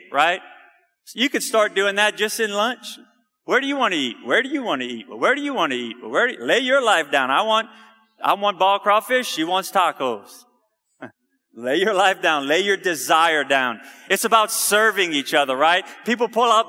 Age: 30-49